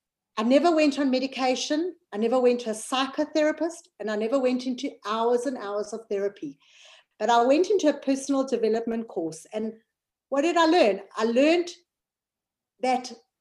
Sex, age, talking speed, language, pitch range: female, 50-69, 165 wpm, English, 235-310 Hz